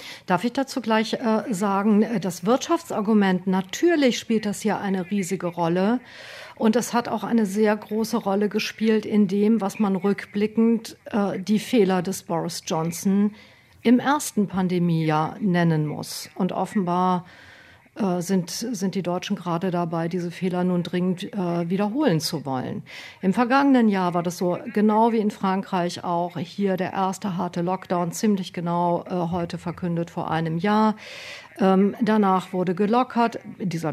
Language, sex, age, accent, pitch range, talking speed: German, female, 50-69, German, 175-215 Hz, 145 wpm